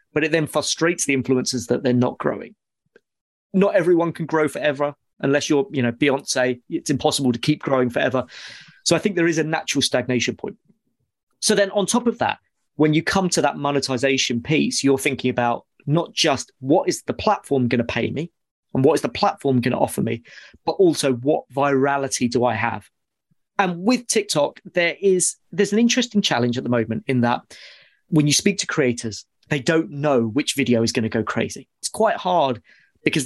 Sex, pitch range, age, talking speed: male, 125-170 Hz, 30-49, 200 wpm